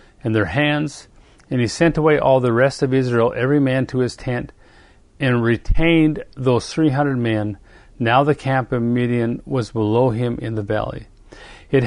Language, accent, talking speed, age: English, American, 170 wpm, 40-59